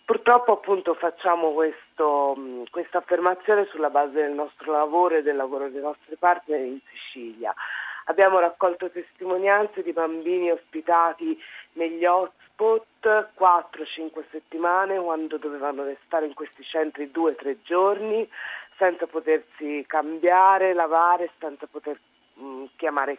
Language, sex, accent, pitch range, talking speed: Italian, female, native, 155-190 Hz, 115 wpm